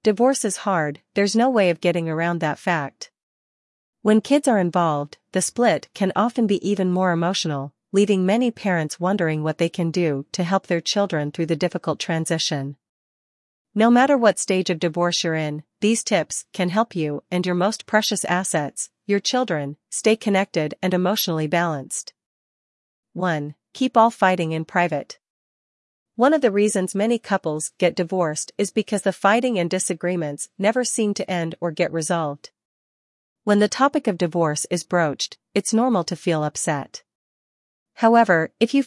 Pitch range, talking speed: 160-210 Hz, 165 wpm